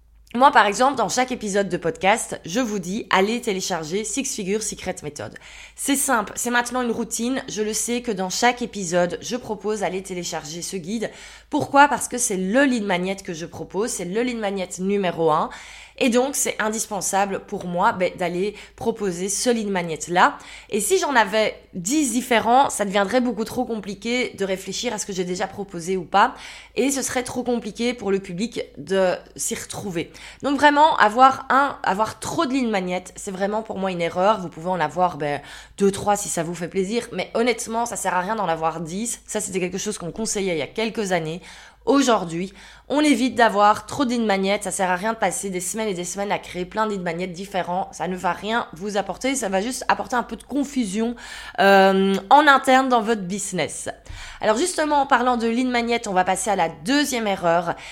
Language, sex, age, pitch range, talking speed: French, female, 20-39, 185-235 Hz, 210 wpm